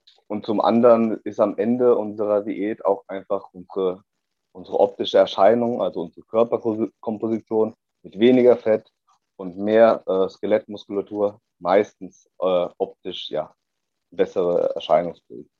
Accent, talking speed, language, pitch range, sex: German, 110 wpm, German, 105-125 Hz, male